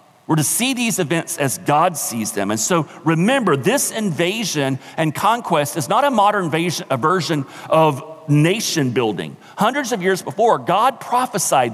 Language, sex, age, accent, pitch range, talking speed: English, male, 40-59, American, 155-205 Hz, 155 wpm